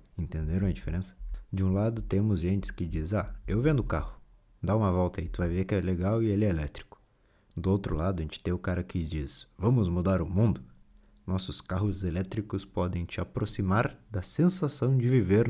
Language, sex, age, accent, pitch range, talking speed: Portuguese, male, 20-39, Brazilian, 85-110 Hz, 200 wpm